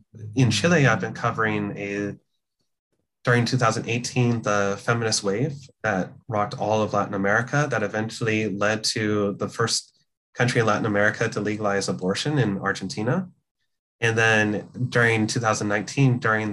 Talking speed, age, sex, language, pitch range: 135 wpm, 20-39, male, English, 105-125 Hz